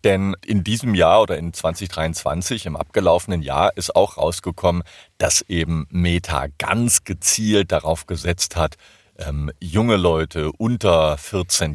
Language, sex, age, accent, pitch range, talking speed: German, male, 40-59, German, 80-95 Hz, 135 wpm